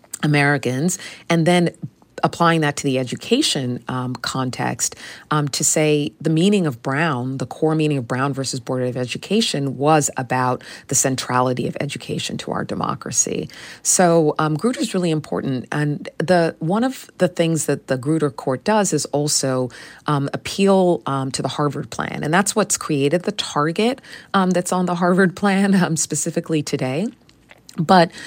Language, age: English, 40-59